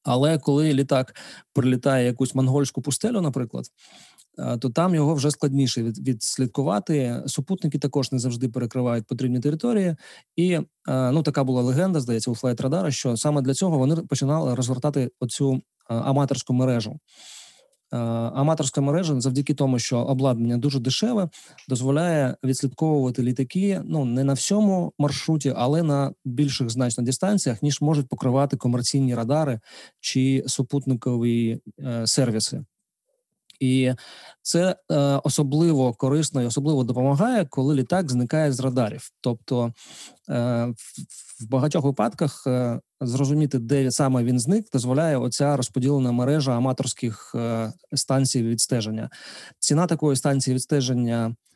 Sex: male